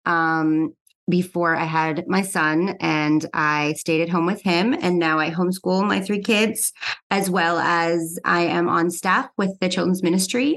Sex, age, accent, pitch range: female, 30-49, American, 160-190 Hz